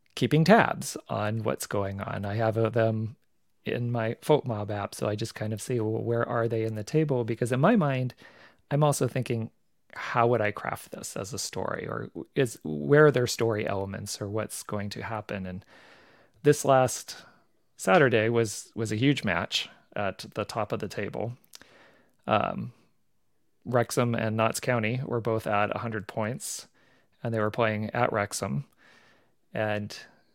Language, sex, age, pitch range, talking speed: English, male, 30-49, 105-125 Hz, 170 wpm